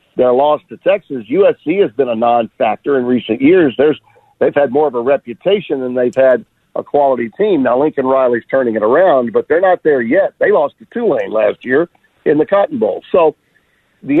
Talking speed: 205 wpm